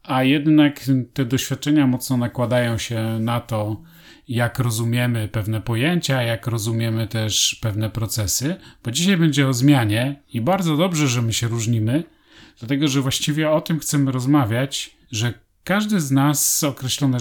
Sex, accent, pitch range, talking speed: male, native, 115-145 Hz, 145 wpm